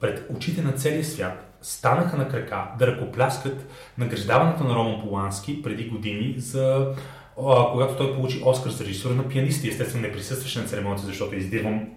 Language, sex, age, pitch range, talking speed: Bulgarian, male, 30-49, 110-135 Hz, 170 wpm